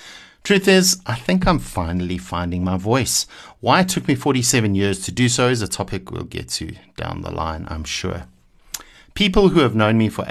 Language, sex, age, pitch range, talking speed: English, male, 60-79, 90-120 Hz, 205 wpm